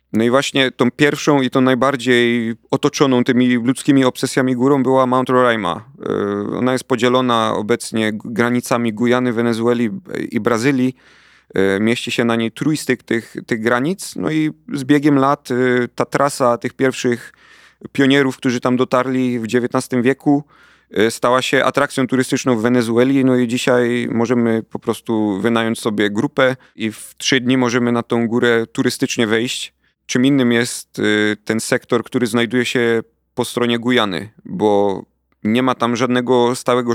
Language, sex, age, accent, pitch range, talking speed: Polish, male, 30-49, native, 115-130 Hz, 150 wpm